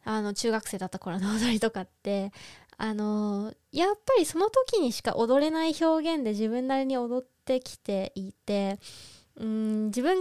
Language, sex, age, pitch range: Japanese, female, 20-39, 215-295 Hz